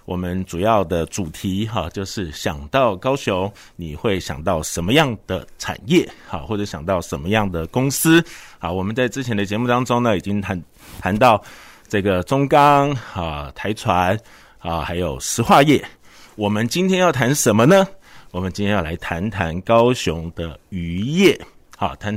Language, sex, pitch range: Chinese, male, 90-120 Hz